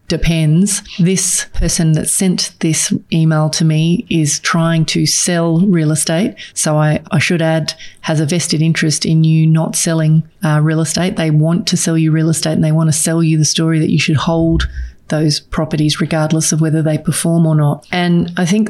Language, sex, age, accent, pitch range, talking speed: English, female, 30-49, Australian, 160-180 Hz, 195 wpm